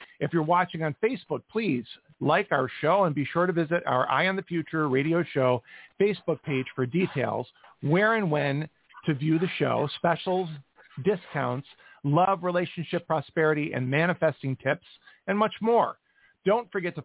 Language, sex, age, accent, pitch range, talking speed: English, male, 40-59, American, 145-180 Hz, 160 wpm